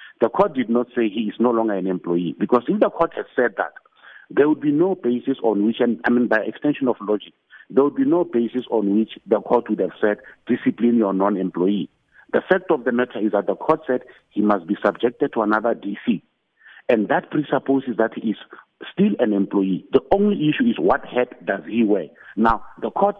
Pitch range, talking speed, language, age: 105-135 Hz, 220 wpm, English, 50-69